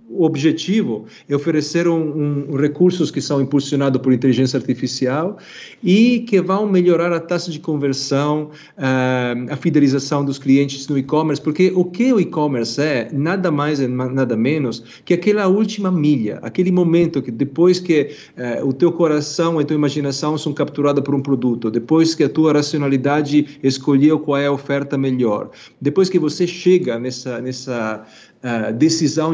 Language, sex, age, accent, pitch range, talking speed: Portuguese, male, 40-59, Brazilian, 130-170 Hz, 165 wpm